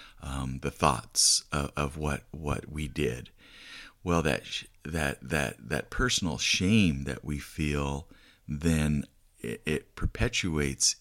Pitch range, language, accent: 70-85 Hz, English, American